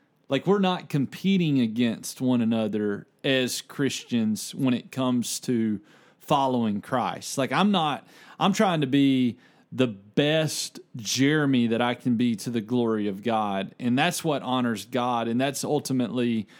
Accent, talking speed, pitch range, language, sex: American, 150 wpm, 120-140 Hz, English, male